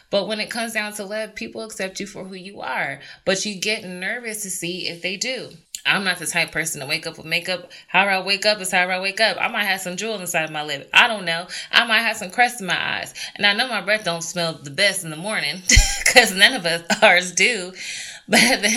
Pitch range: 170-215 Hz